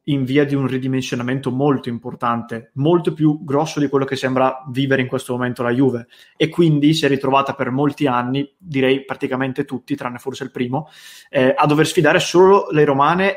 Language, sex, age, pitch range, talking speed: English, male, 20-39, 130-145 Hz, 190 wpm